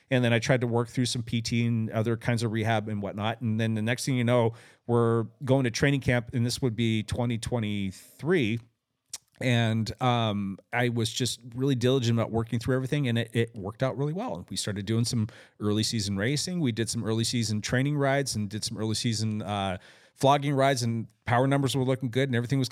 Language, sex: English, male